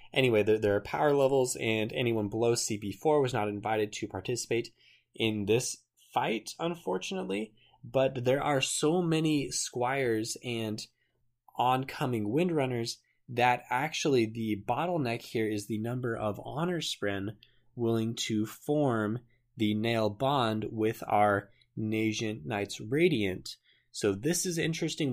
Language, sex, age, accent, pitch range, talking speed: English, male, 20-39, American, 110-145 Hz, 125 wpm